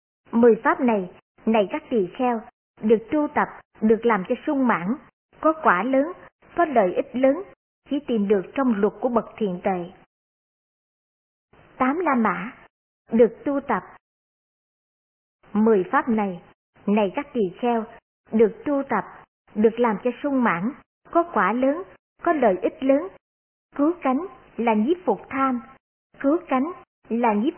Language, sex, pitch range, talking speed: Vietnamese, male, 215-280 Hz, 150 wpm